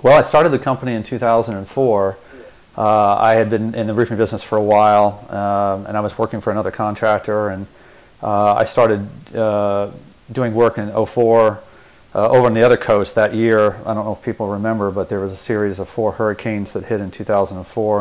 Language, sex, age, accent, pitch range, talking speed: English, male, 40-59, American, 105-115 Hz, 205 wpm